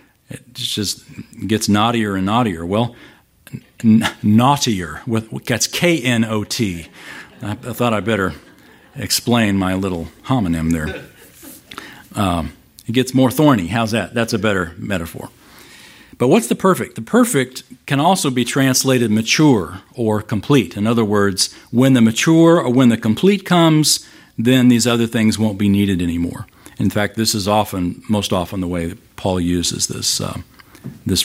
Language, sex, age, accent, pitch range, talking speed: English, male, 50-69, American, 100-130 Hz, 150 wpm